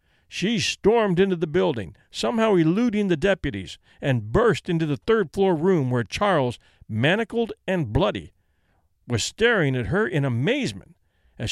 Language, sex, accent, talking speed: English, male, American, 140 wpm